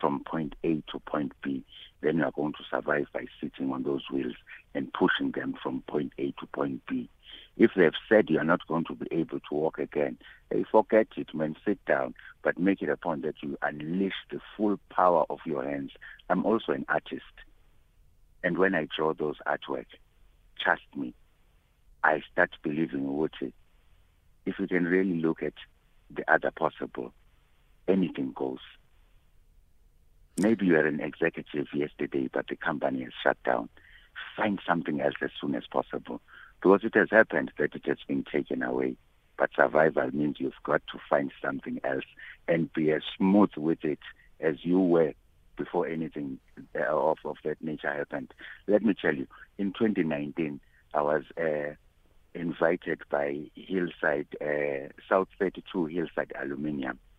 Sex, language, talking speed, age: male, English, 165 wpm, 60-79